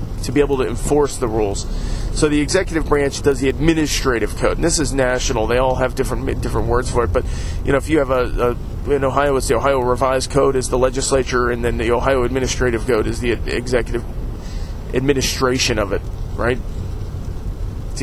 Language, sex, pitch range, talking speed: English, male, 115-145 Hz, 200 wpm